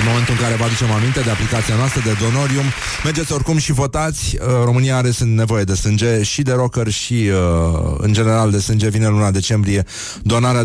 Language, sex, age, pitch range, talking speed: Romanian, male, 30-49, 90-115 Hz, 185 wpm